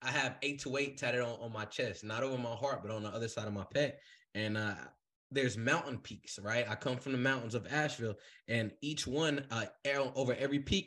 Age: 20-39